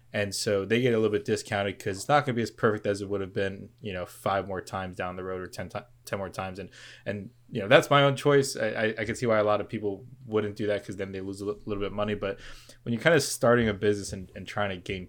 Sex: male